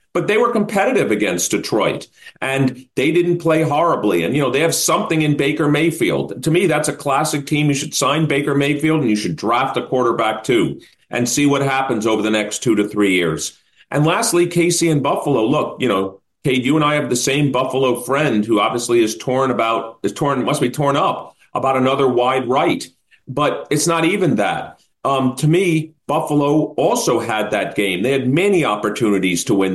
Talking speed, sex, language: 200 wpm, male, English